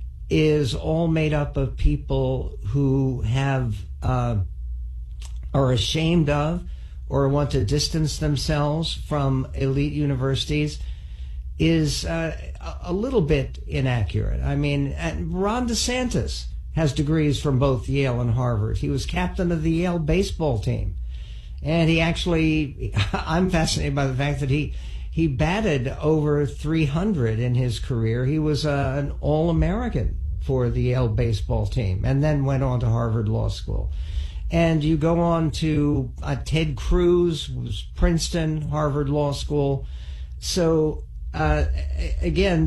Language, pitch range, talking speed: English, 100-150 Hz, 135 wpm